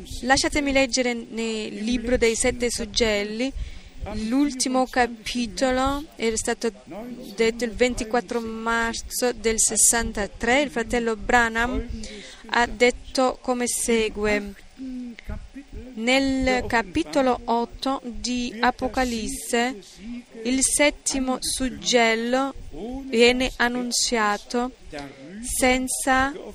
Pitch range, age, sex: 225-255 Hz, 20-39, female